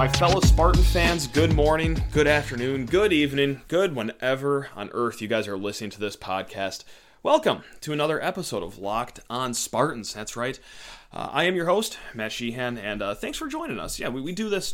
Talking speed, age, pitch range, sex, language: 200 wpm, 30-49, 110-170 Hz, male, English